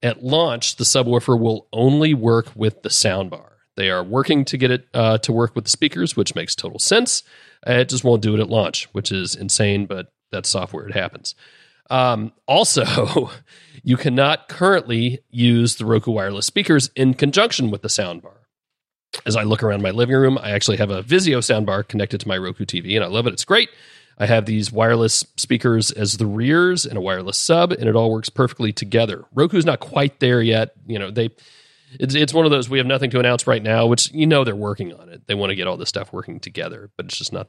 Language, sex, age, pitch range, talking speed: English, male, 40-59, 110-145 Hz, 220 wpm